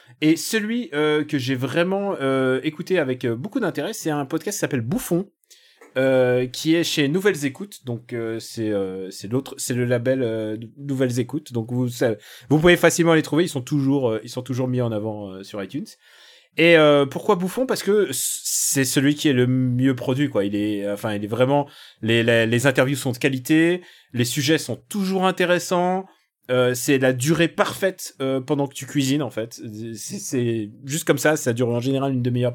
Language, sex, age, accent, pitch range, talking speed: French, male, 30-49, French, 120-160 Hz, 200 wpm